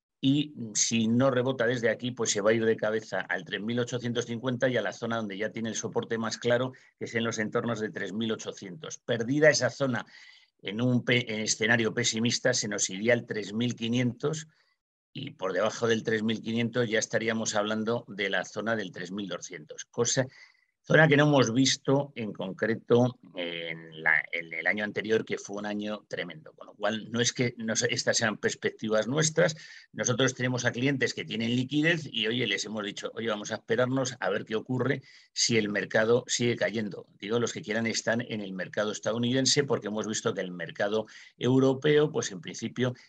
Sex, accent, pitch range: male, Spanish, 110-130 Hz